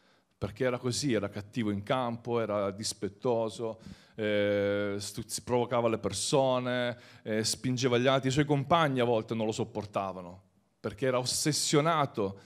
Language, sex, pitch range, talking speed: Italian, male, 105-145 Hz, 140 wpm